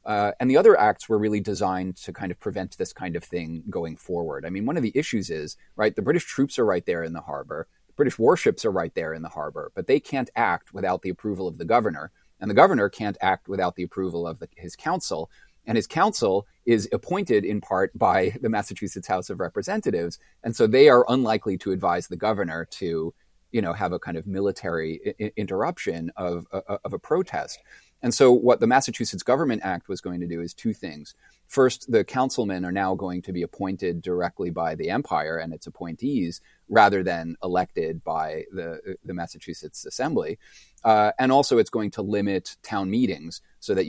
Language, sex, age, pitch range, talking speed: English, male, 30-49, 85-105 Hz, 210 wpm